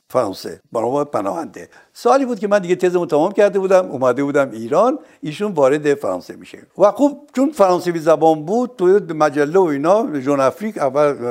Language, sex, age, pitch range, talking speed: Persian, male, 60-79, 145-215 Hz, 175 wpm